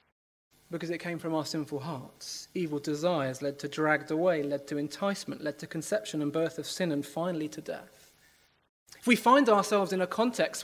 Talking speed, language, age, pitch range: 190 wpm, English, 20-39, 110-170 Hz